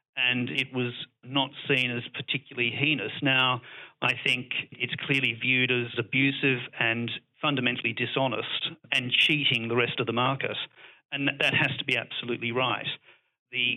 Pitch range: 120-140 Hz